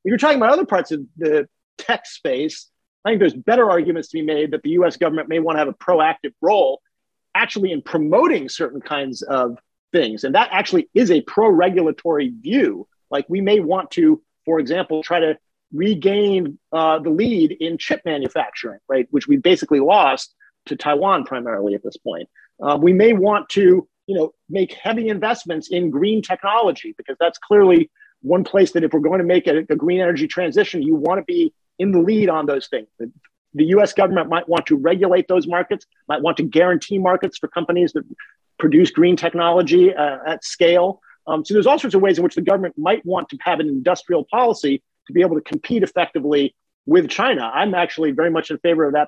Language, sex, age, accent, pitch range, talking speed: English, male, 40-59, American, 155-205 Hz, 200 wpm